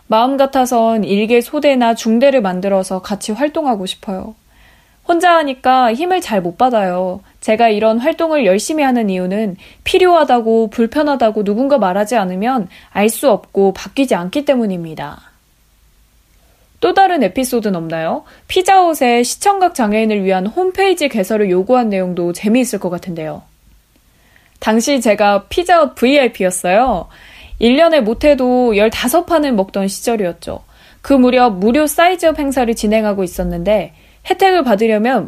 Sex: female